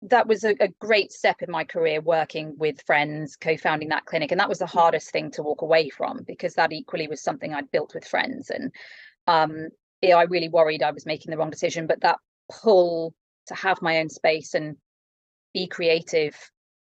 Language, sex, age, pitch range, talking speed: English, female, 30-49, 155-180 Hz, 200 wpm